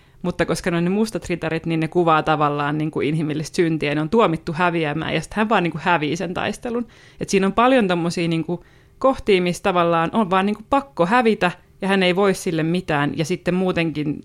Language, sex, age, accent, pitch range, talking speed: Finnish, female, 30-49, native, 155-175 Hz, 200 wpm